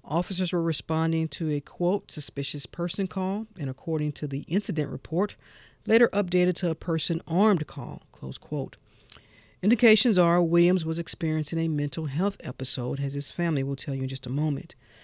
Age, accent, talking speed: 50-69, American, 170 wpm